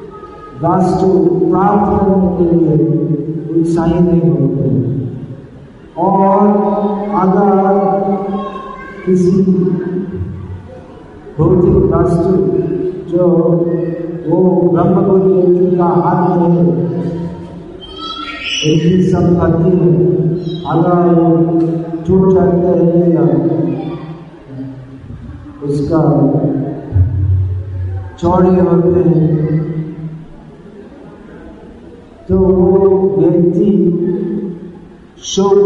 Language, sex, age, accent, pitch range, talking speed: Hindi, male, 50-69, native, 160-190 Hz, 50 wpm